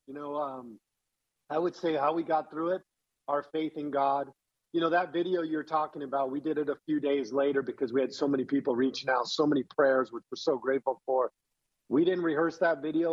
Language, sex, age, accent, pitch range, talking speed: English, male, 50-69, American, 130-155 Hz, 230 wpm